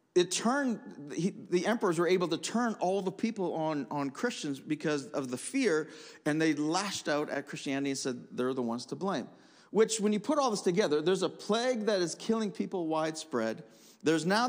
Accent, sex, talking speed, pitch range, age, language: American, male, 200 wpm, 150-215 Hz, 40-59, English